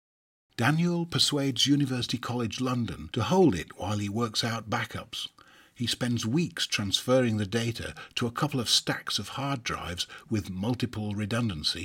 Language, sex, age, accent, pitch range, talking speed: English, male, 50-69, British, 100-130 Hz, 150 wpm